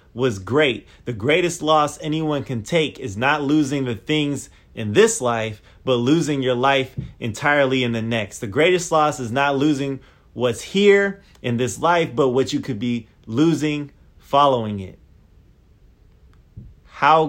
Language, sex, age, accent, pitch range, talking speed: English, male, 30-49, American, 100-140 Hz, 155 wpm